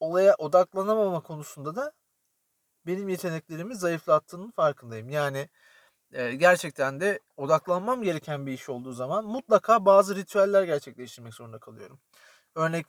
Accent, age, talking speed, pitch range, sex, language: native, 40-59, 110 wpm, 150-220 Hz, male, Turkish